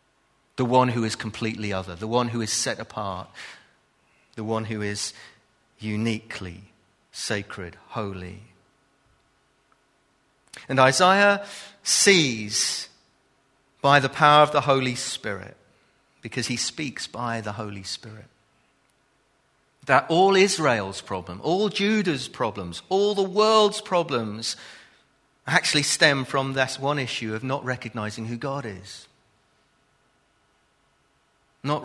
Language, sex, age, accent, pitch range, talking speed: English, male, 40-59, British, 105-135 Hz, 115 wpm